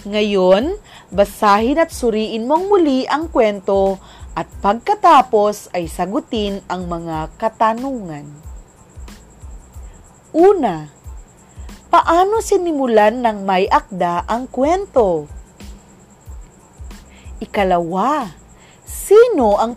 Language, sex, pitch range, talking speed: Filipino, female, 195-310 Hz, 80 wpm